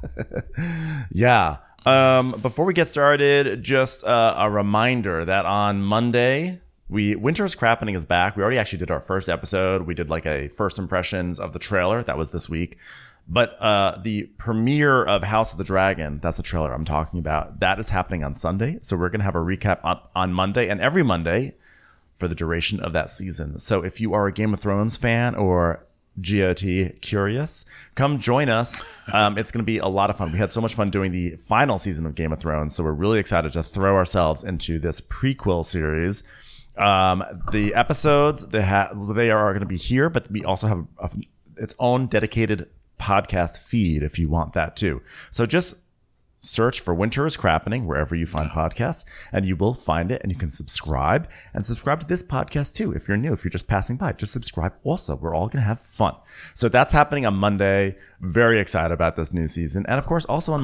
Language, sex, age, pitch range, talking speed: English, male, 30-49, 85-115 Hz, 210 wpm